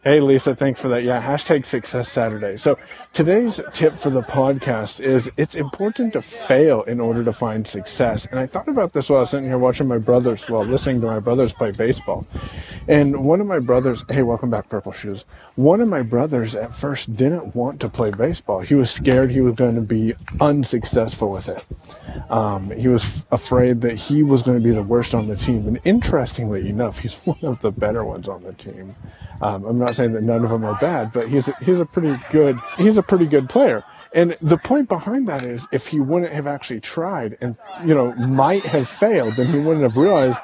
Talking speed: 225 wpm